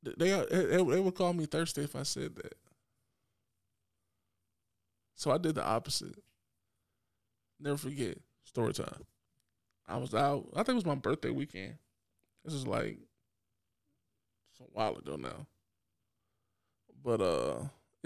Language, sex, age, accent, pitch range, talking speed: English, male, 20-39, American, 105-150 Hz, 130 wpm